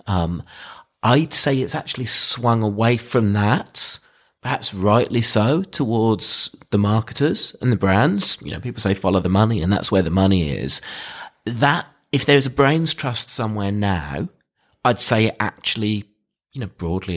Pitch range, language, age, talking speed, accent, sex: 80-105 Hz, English, 30-49, 160 wpm, British, male